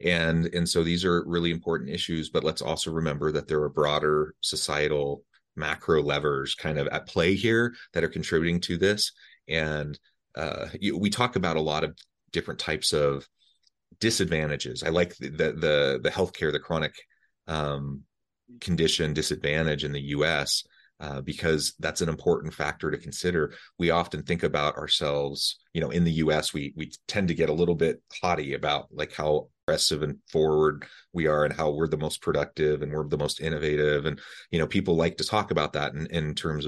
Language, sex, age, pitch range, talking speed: English, male, 30-49, 75-85 Hz, 185 wpm